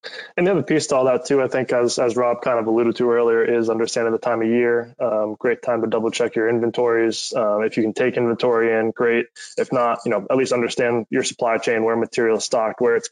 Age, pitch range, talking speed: 20-39, 110-125 Hz, 255 wpm